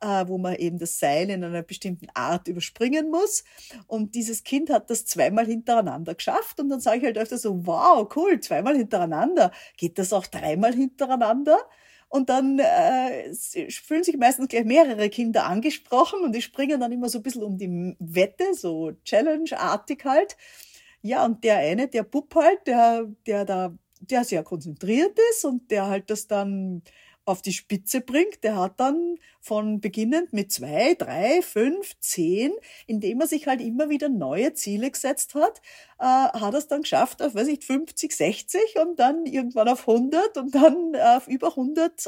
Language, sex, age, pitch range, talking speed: German, female, 50-69, 210-310 Hz, 175 wpm